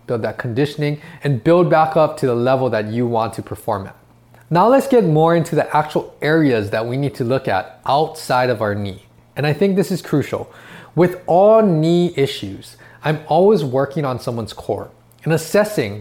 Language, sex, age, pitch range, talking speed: English, male, 20-39, 125-175 Hz, 195 wpm